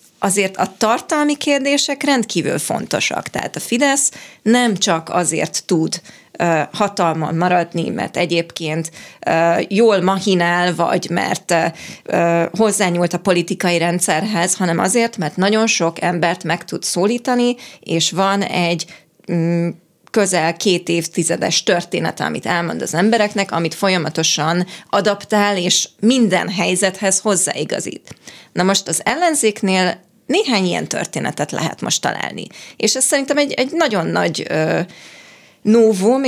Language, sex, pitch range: Hungarian, female, 170-215 Hz